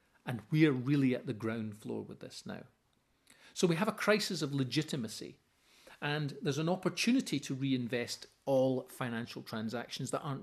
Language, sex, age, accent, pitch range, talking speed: English, male, 40-59, British, 125-175 Hz, 165 wpm